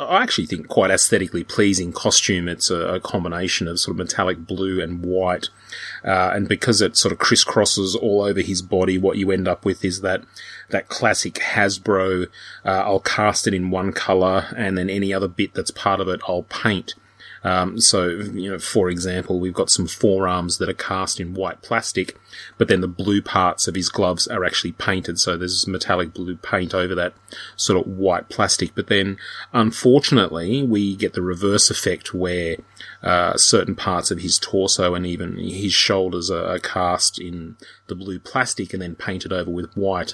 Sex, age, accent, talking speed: male, 30-49, Australian, 190 wpm